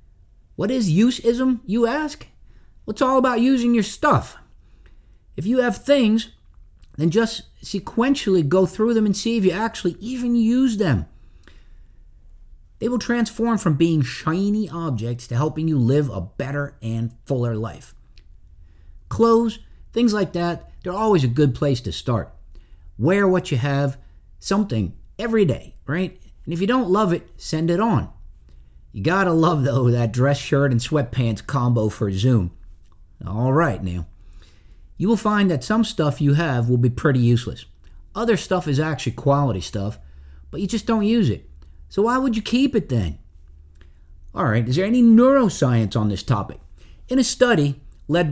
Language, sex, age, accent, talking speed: English, male, 50-69, American, 165 wpm